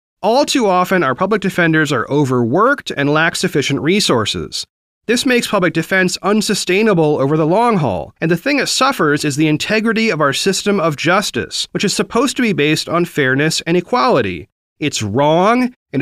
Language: English